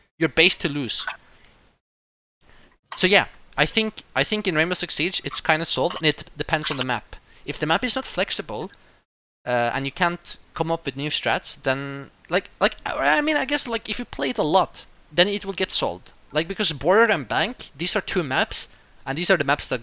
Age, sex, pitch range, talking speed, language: 20-39, male, 125-180 Hz, 220 wpm, English